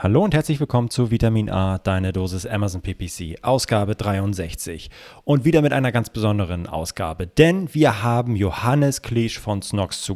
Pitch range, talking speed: 105-140 Hz, 165 wpm